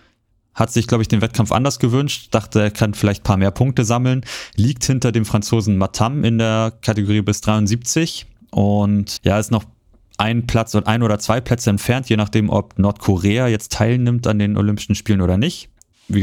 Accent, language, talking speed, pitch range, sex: German, German, 190 wpm, 100-115 Hz, male